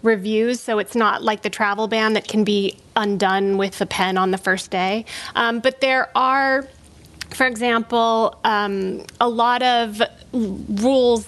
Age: 30-49